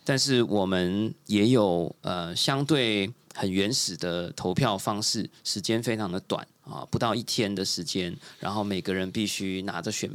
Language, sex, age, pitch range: Chinese, male, 20-39, 100-125 Hz